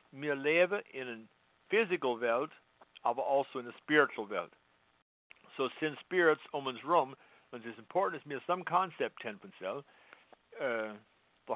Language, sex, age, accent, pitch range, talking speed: English, male, 60-79, American, 110-165 Hz, 150 wpm